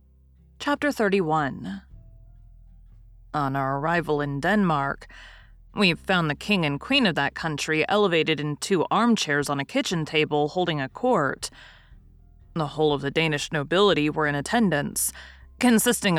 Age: 30-49